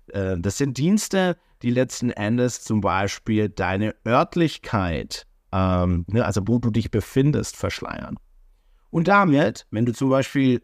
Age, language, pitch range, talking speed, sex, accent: 50-69, German, 95-125 Hz, 130 wpm, male, German